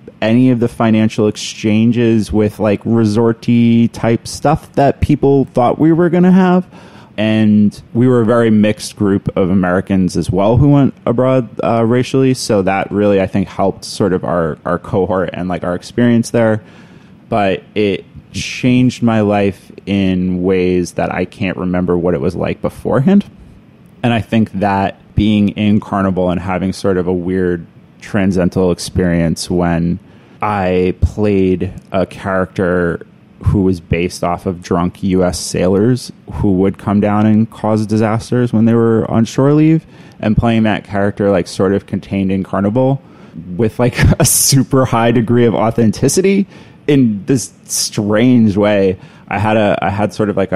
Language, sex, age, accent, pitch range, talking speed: English, male, 20-39, American, 95-120 Hz, 165 wpm